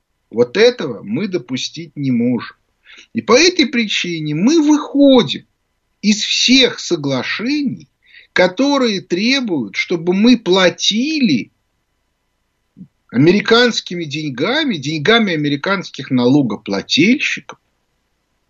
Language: Russian